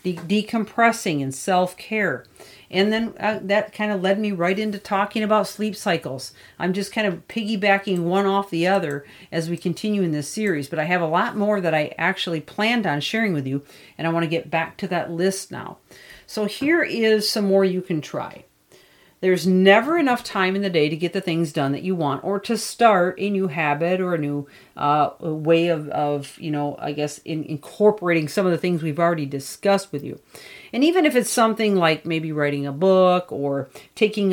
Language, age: English, 50-69